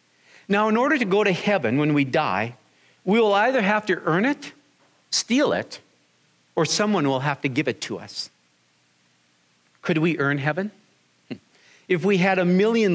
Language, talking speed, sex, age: English, 170 wpm, male, 50-69